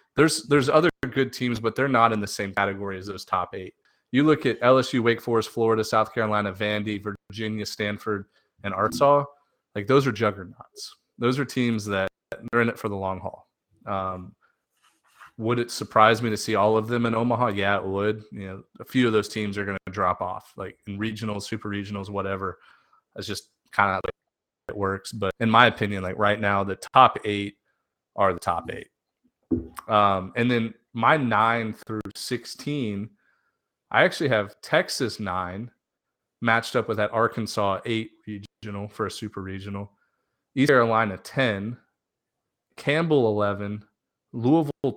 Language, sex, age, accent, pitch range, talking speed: English, male, 30-49, American, 100-120 Hz, 170 wpm